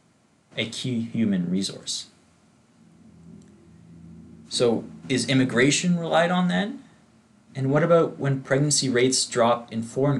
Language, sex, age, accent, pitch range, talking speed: English, male, 30-49, American, 110-140 Hz, 110 wpm